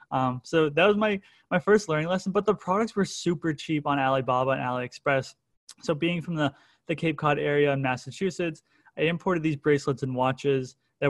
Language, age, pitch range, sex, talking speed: English, 20-39, 140-175 Hz, male, 195 wpm